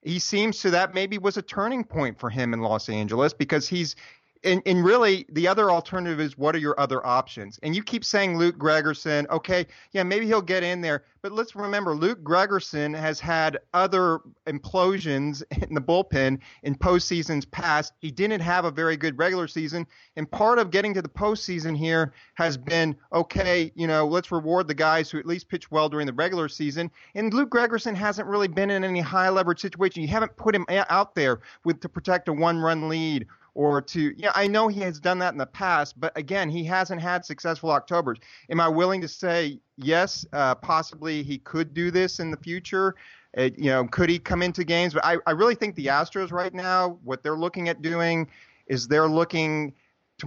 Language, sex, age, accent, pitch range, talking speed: English, male, 30-49, American, 150-185 Hz, 205 wpm